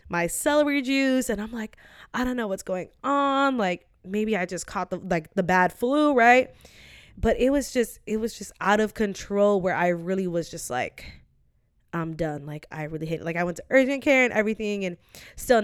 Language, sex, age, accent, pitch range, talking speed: English, female, 20-39, American, 175-225 Hz, 210 wpm